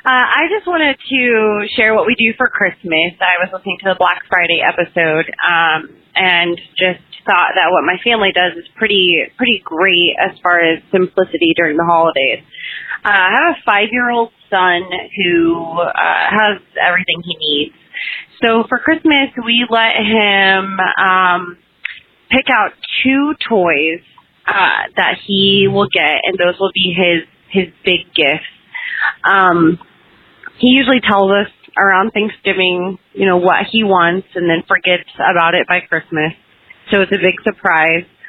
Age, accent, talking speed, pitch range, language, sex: 30-49, American, 155 wpm, 175-220 Hz, English, female